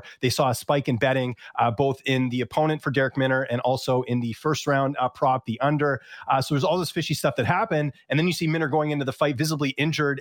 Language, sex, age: English, male, 30-49